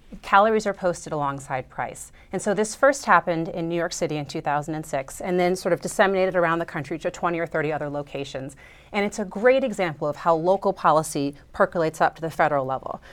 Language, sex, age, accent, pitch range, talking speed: English, female, 30-49, American, 155-195 Hz, 205 wpm